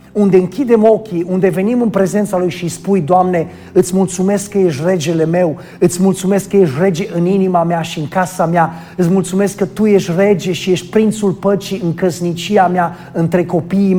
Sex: male